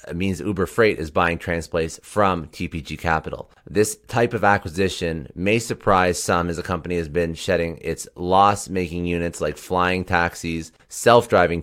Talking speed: 150 wpm